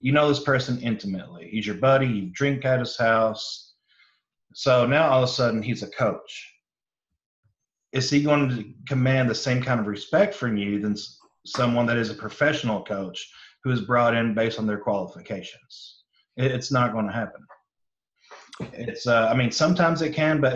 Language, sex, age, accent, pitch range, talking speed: English, male, 30-49, American, 115-140 Hz, 180 wpm